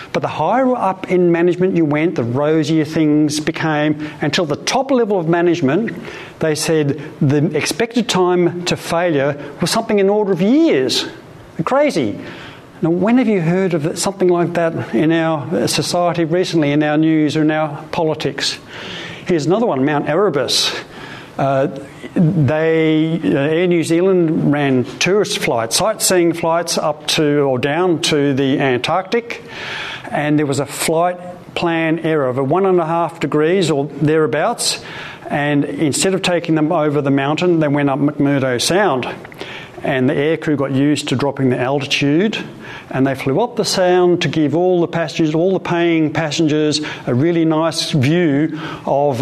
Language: English